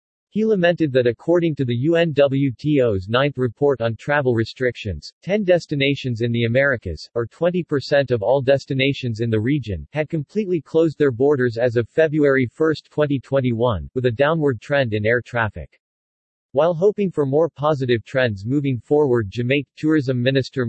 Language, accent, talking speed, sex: English, American, 155 wpm, male